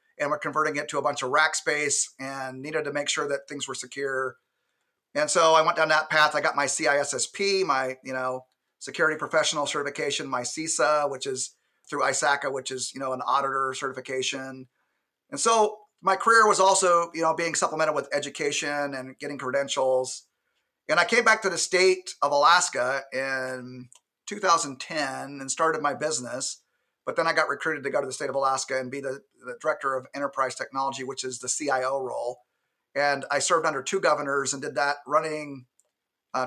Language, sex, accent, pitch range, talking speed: English, male, American, 130-155 Hz, 190 wpm